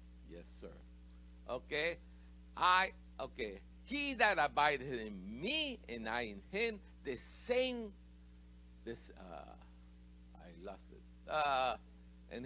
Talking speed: 110 wpm